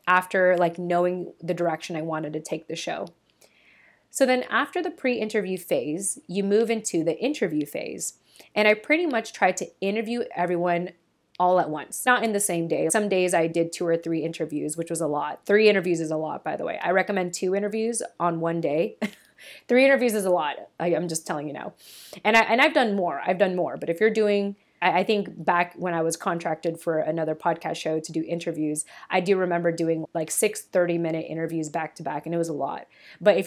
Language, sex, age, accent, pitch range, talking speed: English, female, 20-39, American, 165-205 Hz, 220 wpm